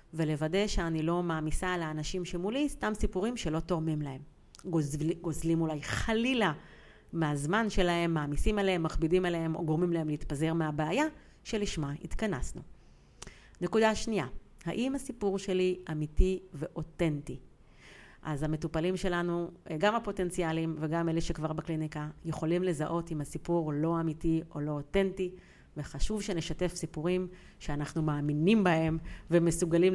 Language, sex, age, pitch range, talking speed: Hebrew, female, 40-59, 155-185 Hz, 120 wpm